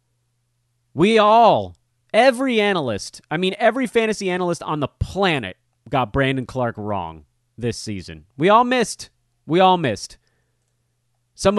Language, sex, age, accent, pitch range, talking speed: English, male, 30-49, American, 120-175 Hz, 130 wpm